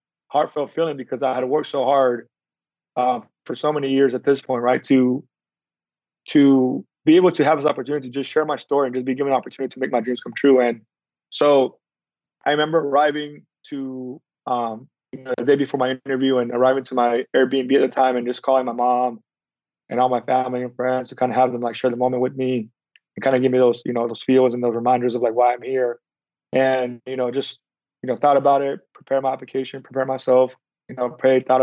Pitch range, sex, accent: 125-135 Hz, male, American